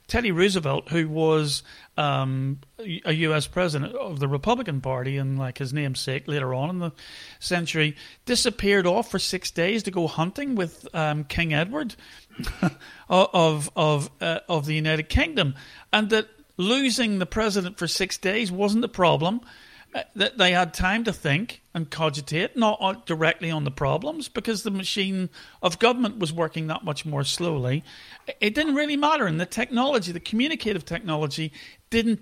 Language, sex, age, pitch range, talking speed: English, male, 50-69, 155-220 Hz, 160 wpm